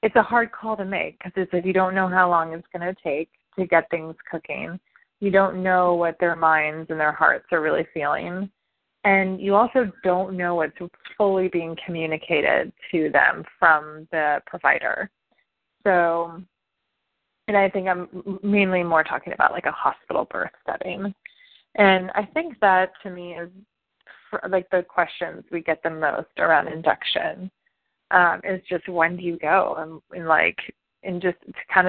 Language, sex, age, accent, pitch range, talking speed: English, female, 20-39, American, 165-195 Hz, 170 wpm